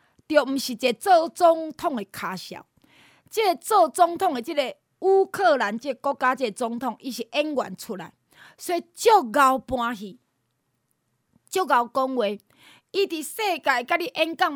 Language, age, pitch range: Chinese, 30-49, 230-345 Hz